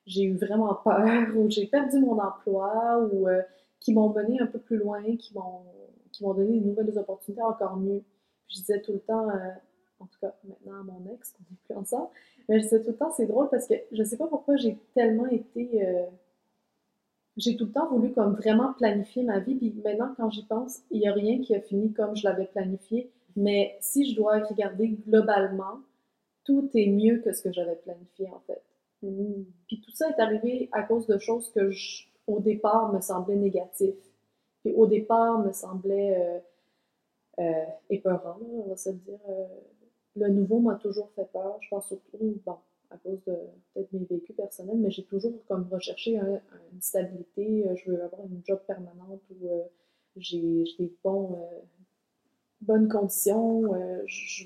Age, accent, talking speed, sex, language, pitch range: 30-49, Canadian, 195 wpm, female, French, 190-225 Hz